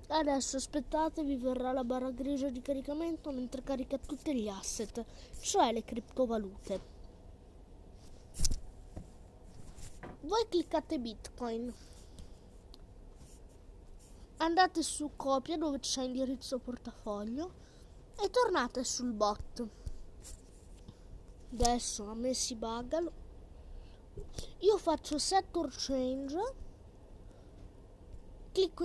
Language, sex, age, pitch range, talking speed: Italian, female, 20-39, 235-315 Hz, 85 wpm